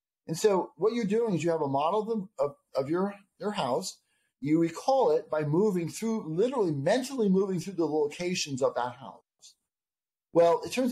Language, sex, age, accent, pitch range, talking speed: English, male, 40-59, American, 145-215 Hz, 185 wpm